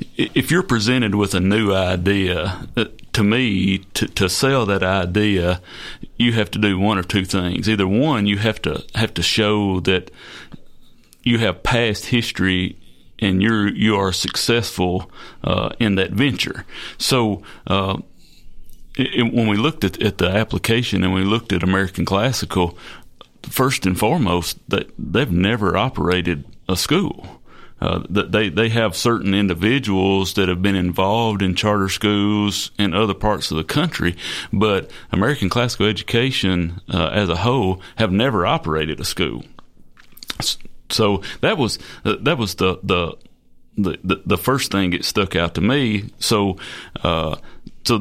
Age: 40-59